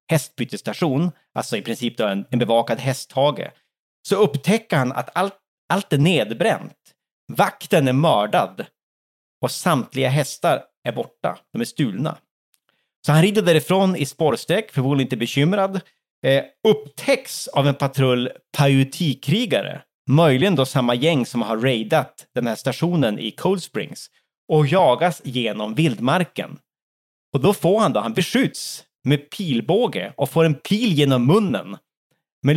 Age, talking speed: 30-49, 140 wpm